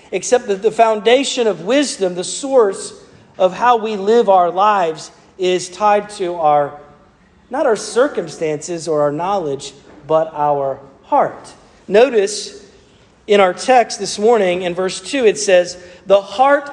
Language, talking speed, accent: English, 145 wpm, American